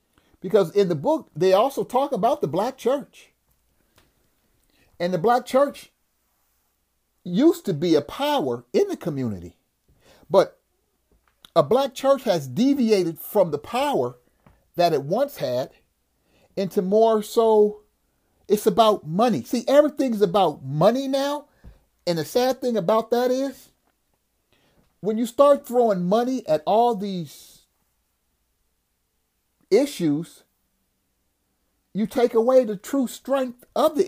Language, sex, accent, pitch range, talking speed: English, male, American, 170-255 Hz, 125 wpm